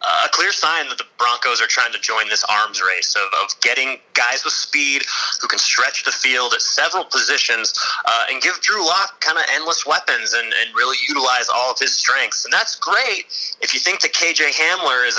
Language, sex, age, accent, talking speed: English, male, 30-49, American, 215 wpm